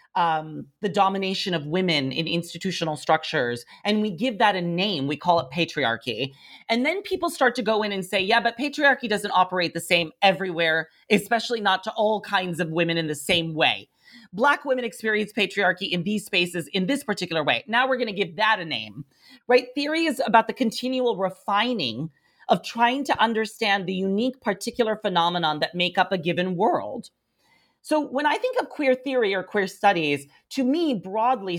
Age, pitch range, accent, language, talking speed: 40-59, 175-245 Hz, American, English, 190 wpm